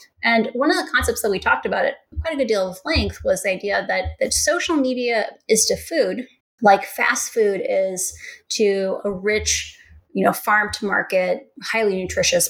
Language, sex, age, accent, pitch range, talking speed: English, female, 20-39, American, 195-275 Hz, 190 wpm